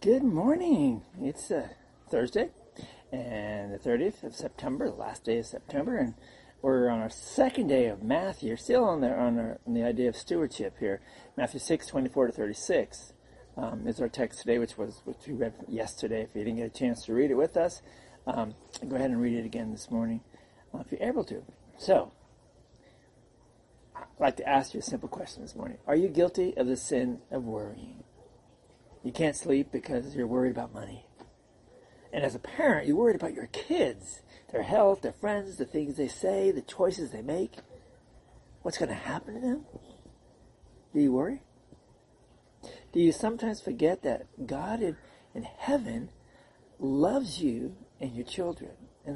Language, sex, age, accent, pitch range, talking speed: English, male, 40-59, American, 120-185 Hz, 175 wpm